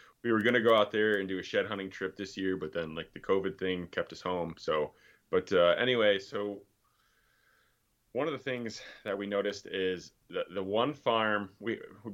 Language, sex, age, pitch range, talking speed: English, male, 20-39, 90-105 Hz, 210 wpm